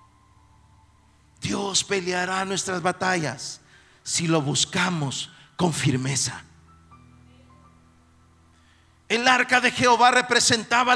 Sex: male